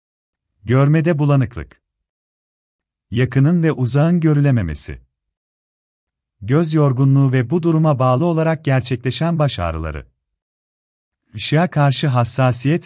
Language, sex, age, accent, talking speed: Turkish, male, 40-59, native, 90 wpm